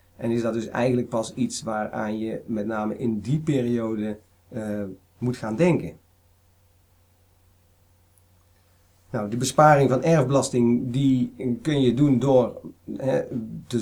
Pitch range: 105-130 Hz